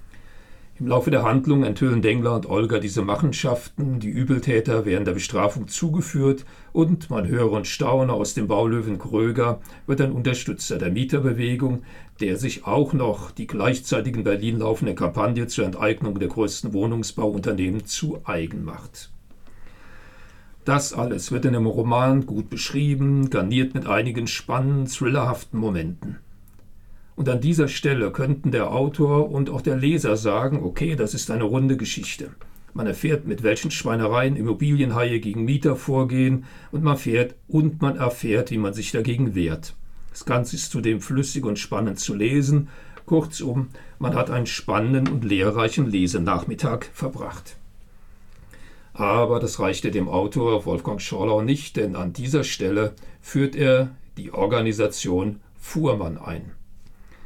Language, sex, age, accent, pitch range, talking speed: German, male, 40-59, German, 105-135 Hz, 140 wpm